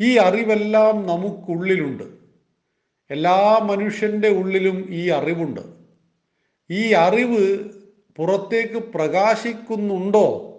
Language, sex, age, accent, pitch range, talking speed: Malayalam, male, 40-59, native, 165-210 Hz, 70 wpm